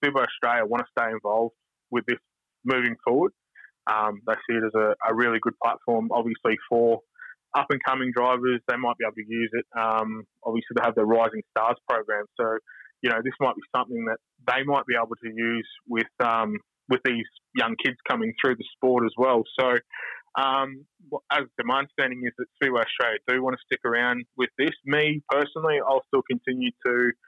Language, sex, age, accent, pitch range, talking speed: English, male, 20-39, Australian, 115-130 Hz, 195 wpm